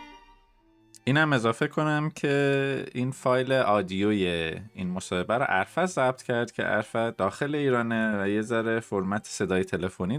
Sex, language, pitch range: male, Persian, 100-145 Hz